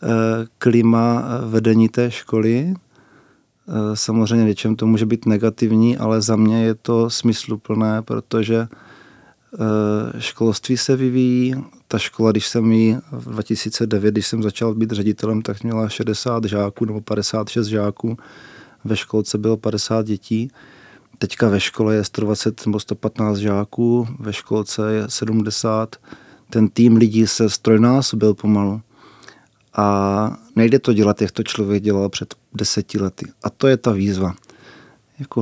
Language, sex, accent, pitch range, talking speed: Czech, male, native, 105-115 Hz, 130 wpm